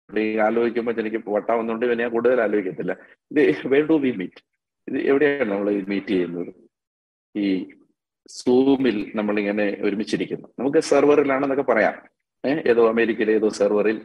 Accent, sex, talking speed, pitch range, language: native, male, 125 wpm, 95-115 Hz, Malayalam